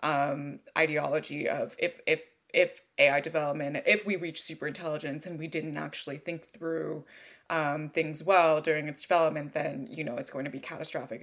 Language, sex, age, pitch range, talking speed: English, female, 20-39, 155-195 Hz, 175 wpm